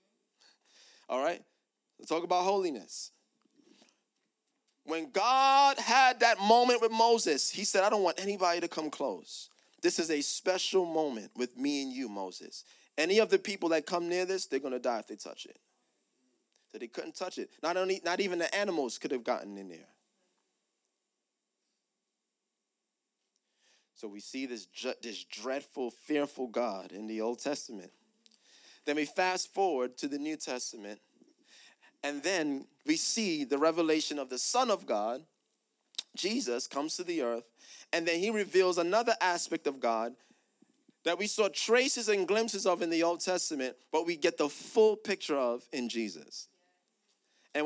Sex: male